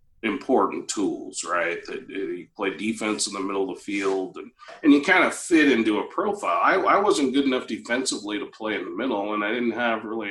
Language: English